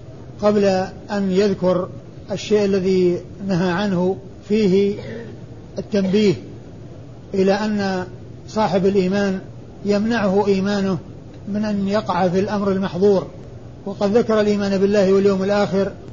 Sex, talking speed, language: male, 100 wpm, Arabic